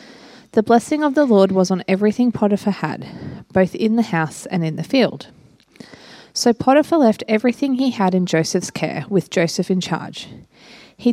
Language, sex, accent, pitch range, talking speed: English, female, Australian, 175-235 Hz, 175 wpm